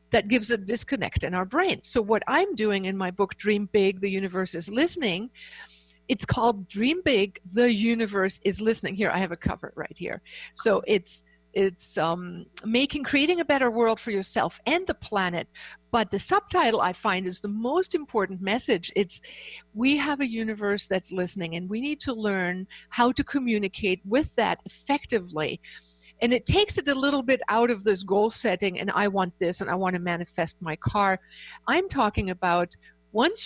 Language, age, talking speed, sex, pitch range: English, 50-69, 185 wpm, female, 185-245 Hz